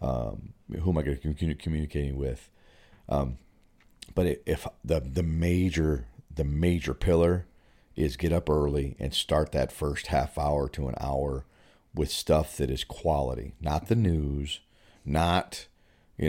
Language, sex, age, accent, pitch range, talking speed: English, male, 40-59, American, 75-95 Hz, 145 wpm